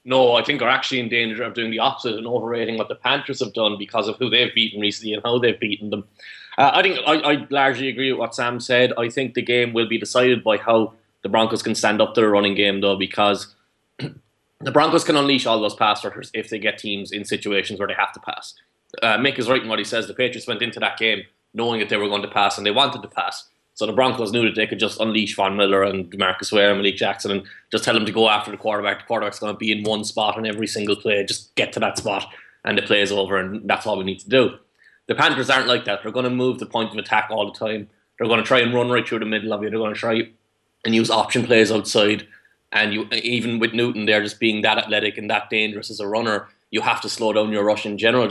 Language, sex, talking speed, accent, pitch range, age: English, male, 275 wpm, Irish, 105-120 Hz, 20-39